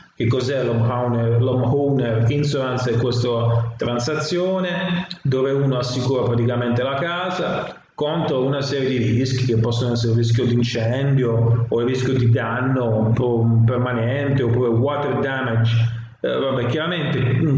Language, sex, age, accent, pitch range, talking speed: Italian, male, 30-49, native, 115-140 Hz, 140 wpm